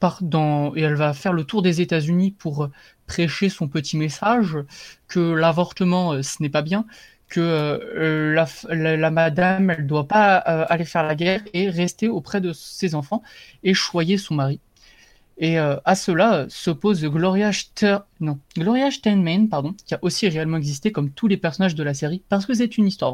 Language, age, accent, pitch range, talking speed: French, 30-49, French, 155-190 Hz, 180 wpm